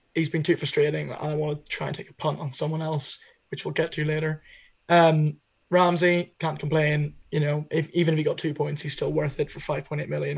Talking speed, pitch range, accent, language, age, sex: 230 wpm, 155-165 Hz, British, English, 20-39, male